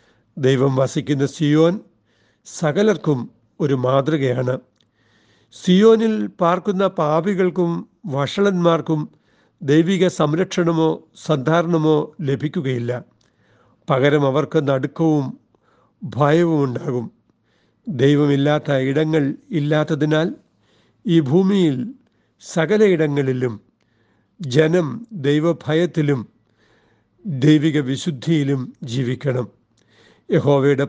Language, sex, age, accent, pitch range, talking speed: Malayalam, male, 60-79, native, 130-160 Hz, 60 wpm